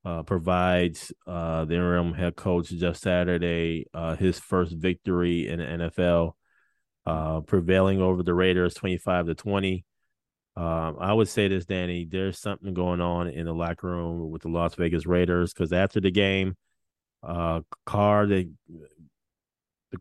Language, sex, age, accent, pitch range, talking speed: English, male, 30-49, American, 85-95 Hz, 155 wpm